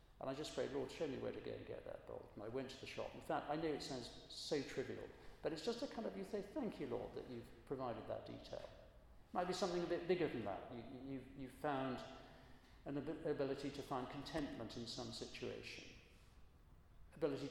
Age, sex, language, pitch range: 50-69, male, English, 115-155 Hz